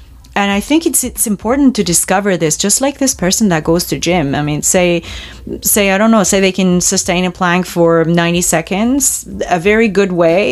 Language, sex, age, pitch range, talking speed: English, female, 30-49, 170-215 Hz, 210 wpm